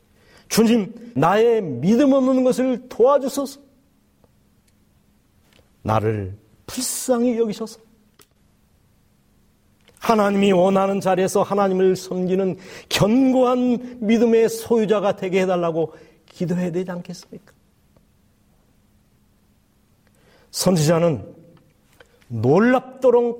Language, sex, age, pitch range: Korean, male, 40-59, 150-215 Hz